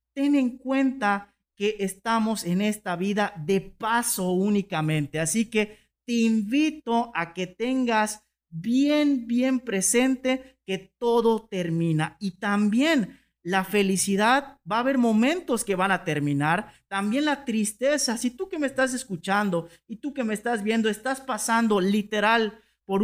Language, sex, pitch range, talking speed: Spanish, male, 190-250 Hz, 145 wpm